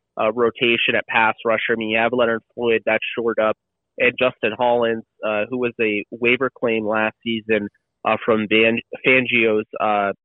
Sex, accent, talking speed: male, American, 175 wpm